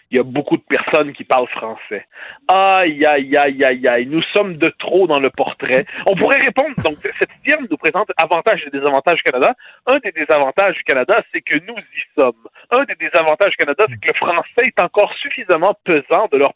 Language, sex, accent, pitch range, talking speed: French, male, French, 155-245 Hz, 215 wpm